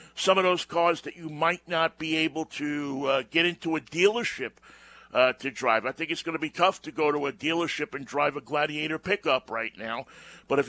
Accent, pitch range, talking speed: American, 145-185 Hz, 225 wpm